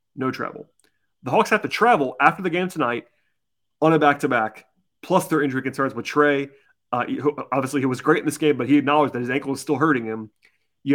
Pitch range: 125-150 Hz